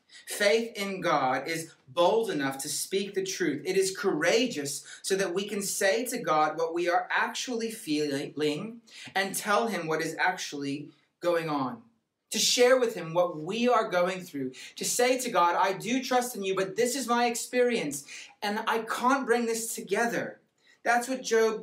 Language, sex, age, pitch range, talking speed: English, male, 30-49, 150-215 Hz, 180 wpm